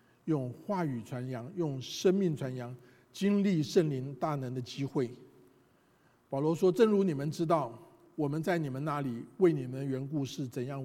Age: 50-69